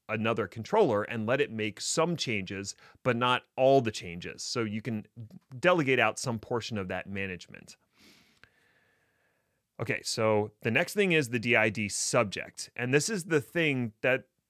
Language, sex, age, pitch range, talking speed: English, male, 30-49, 110-150 Hz, 155 wpm